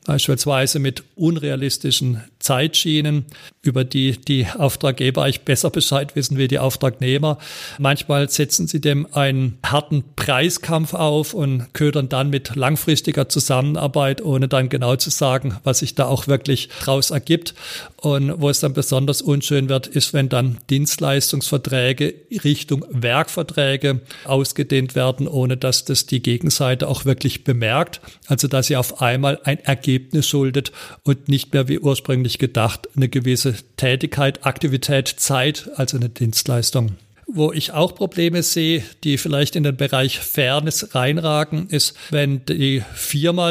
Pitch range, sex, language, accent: 130-150 Hz, male, German, German